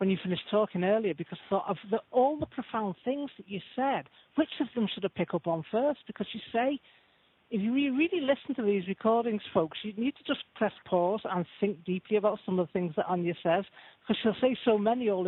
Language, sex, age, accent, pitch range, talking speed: English, male, 40-59, British, 165-215 Hz, 230 wpm